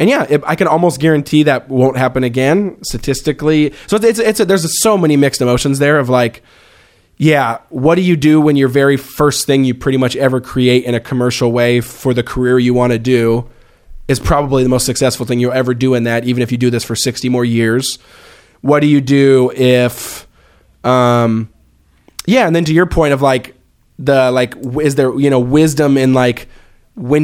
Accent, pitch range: American, 125-140 Hz